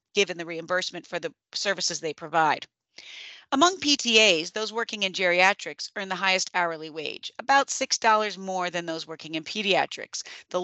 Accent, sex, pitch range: American, female, 180-240 Hz